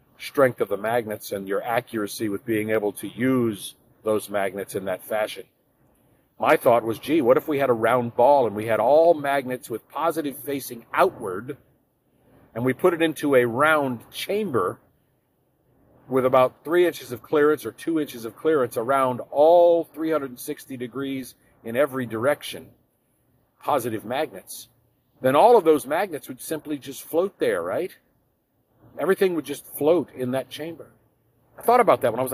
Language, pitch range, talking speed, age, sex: English, 120-155 Hz, 165 wpm, 50-69, male